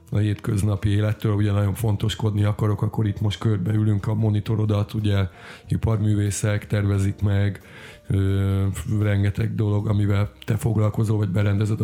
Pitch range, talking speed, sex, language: 100-110 Hz, 125 wpm, male, Hungarian